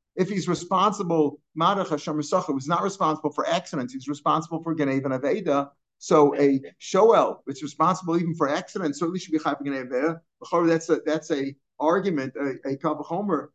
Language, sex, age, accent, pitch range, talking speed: English, male, 50-69, American, 150-180 Hz, 135 wpm